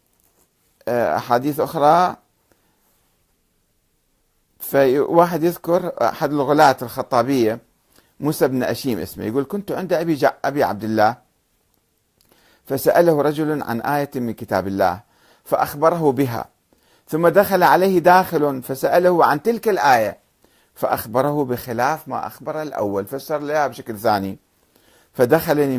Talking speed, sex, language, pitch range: 100 wpm, male, Arabic, 120-165 Hz